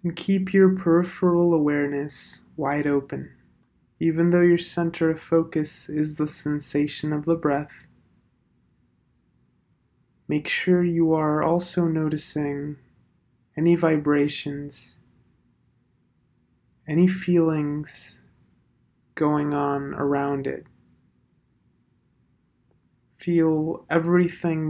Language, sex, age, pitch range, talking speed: English, male, 20-39, 140-165 Hz, 85 wpm